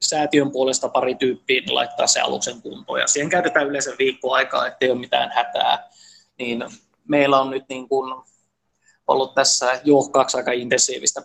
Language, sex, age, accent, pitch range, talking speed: Finnish, male, 20-39, native, 125-140 Hz, 145 wpm